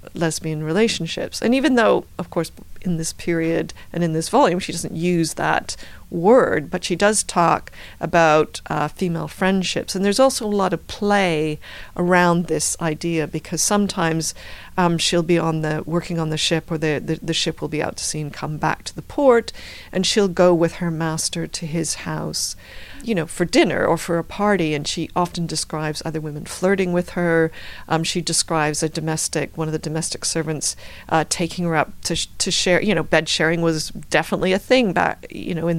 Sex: female